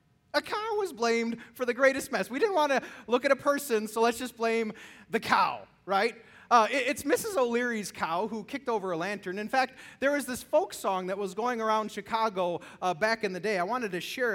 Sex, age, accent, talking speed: male, 30-49, American, 225 wpm